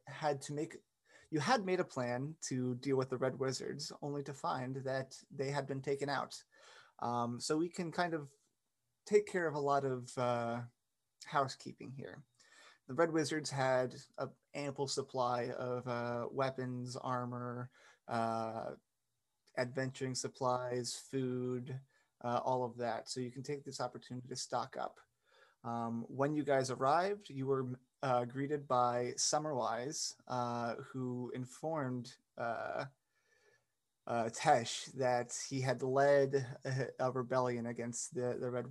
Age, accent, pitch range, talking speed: 30-49, American, 120-135 Hz, 145 wpm